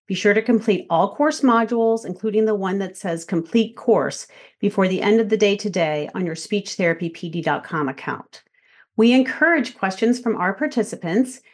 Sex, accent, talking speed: female, American, 160 wpm